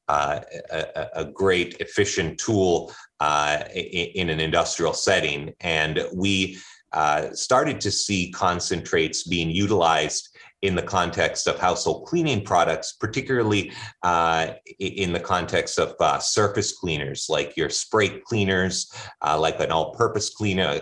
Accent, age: American, 30-49